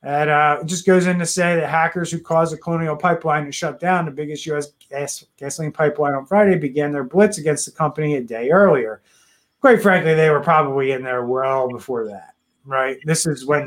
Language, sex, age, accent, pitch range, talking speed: English, male, 30-49, American, 130-165 Hz, 215 wpm